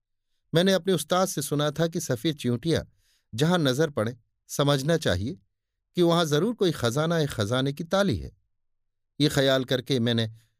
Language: Hindi